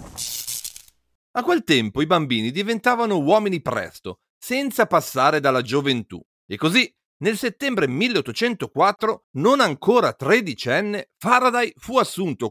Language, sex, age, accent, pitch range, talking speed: Italian, male, 40-59, native, 140-230 Hz, 110 wpm